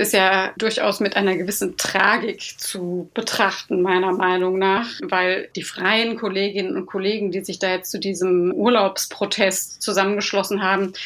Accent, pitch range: German, 190-220 Hz